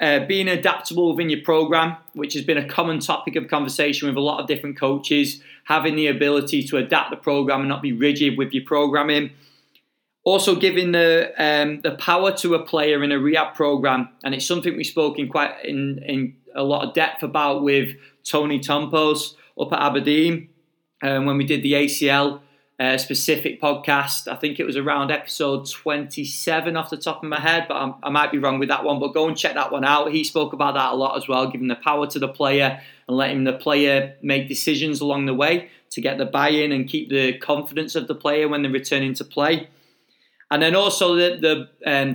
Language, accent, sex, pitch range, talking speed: English, British, male, 140-155 Hz, 215 wpm